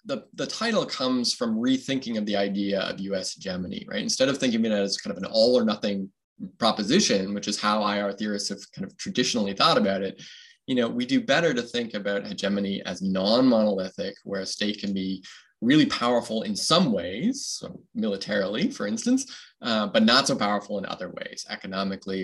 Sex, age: male, 20-39